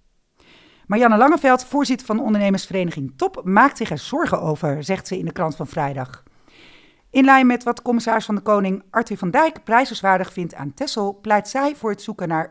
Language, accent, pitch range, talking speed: Dutch, Dutch, 160-230 Hz, 190 wpm